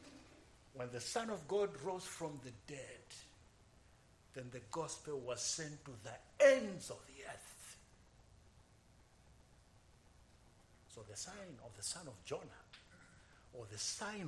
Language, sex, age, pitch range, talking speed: English, male, 60-79, 100-145 Hz, 130 wpm